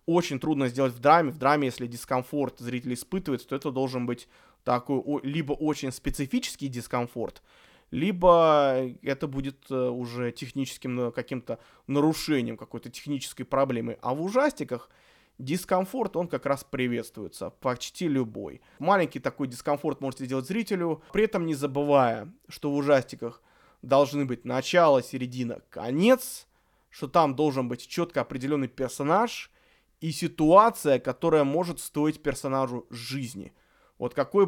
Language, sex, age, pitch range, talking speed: Russian, male, 20-39, 125-150 Hz, 130 wpm